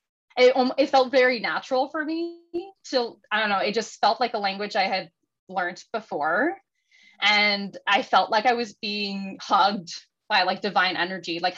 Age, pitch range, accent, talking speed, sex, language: 20-39, 195-245 Hz, American, 175 wpm, female, English